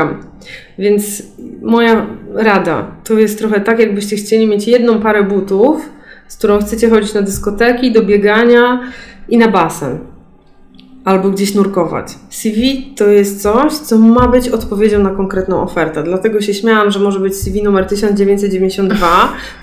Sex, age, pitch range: female, 20-39, 195-225 Hz